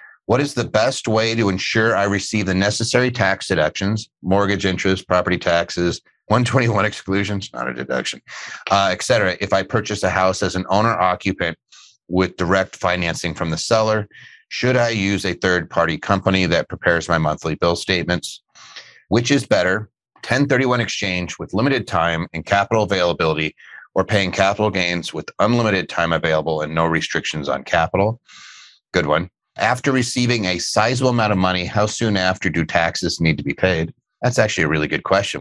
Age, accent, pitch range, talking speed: 30-49, American, 85-110 Hz, 170 wpm